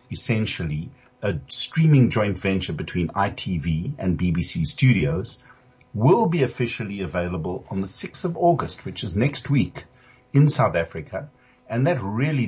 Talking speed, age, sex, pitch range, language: 140 wpm, 50-69, male, 85-125 Hz, English